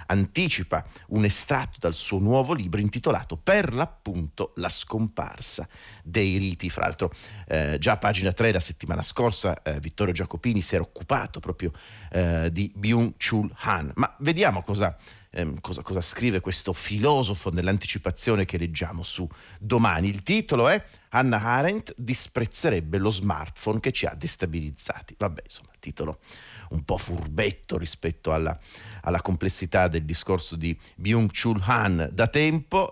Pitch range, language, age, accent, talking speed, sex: 85-110 Hz, Italian, 40-59, native, 140 wpm, male